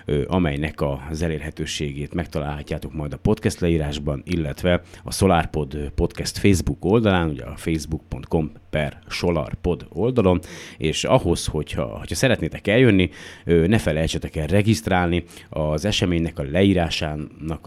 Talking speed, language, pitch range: 115 wpm, Hungarian, 80-95 Hz